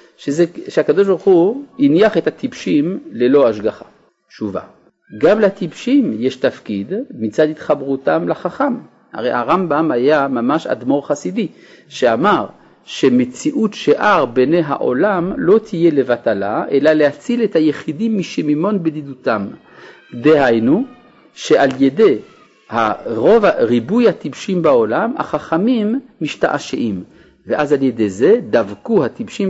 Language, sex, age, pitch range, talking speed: Hebrew, male, 50-69, 135-225 Hz, 105 wpm